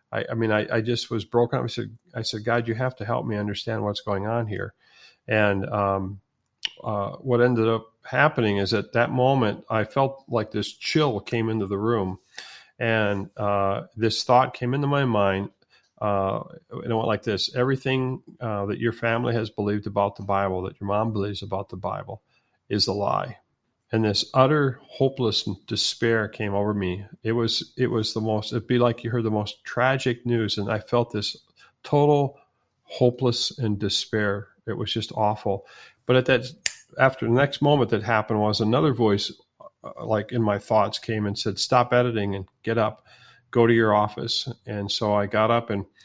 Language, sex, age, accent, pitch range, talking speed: English, male, 40-59, American, 105-120 Hz, 190 wpm